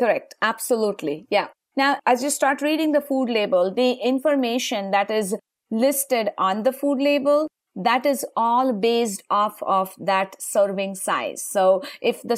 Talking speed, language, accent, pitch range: 155 wpm, English, Indian, 205-265 Hz